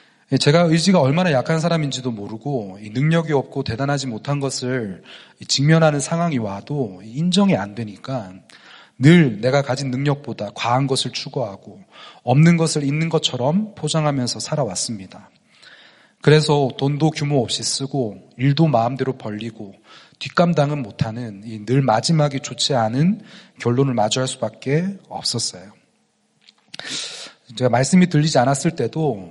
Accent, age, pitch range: native, 30-49, 120-150 Hz